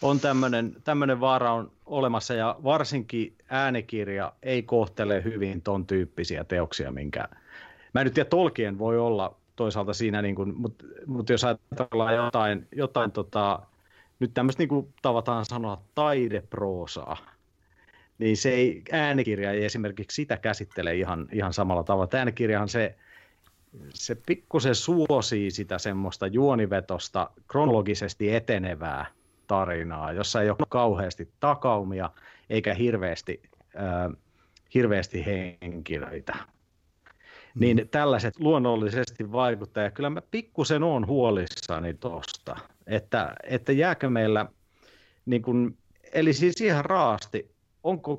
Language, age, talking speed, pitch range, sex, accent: Finnish, 30-49, 110 wpm, 95-125 Hz, male, native